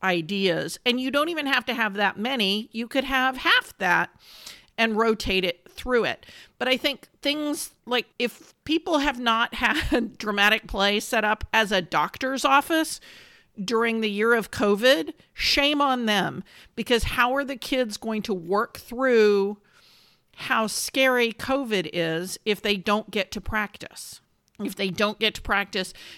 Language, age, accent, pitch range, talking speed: English, 50-69, American, 185-235 Hz, 165 wpm